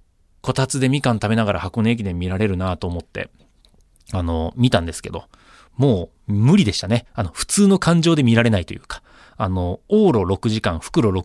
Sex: male